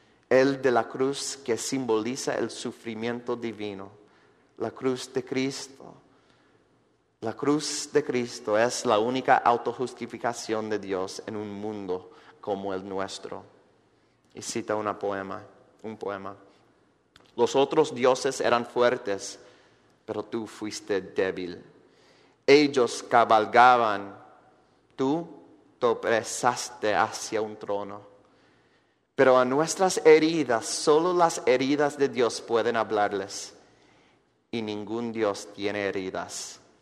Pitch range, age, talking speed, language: 105-135 Hz, 30-49, 110 wpm, Spanish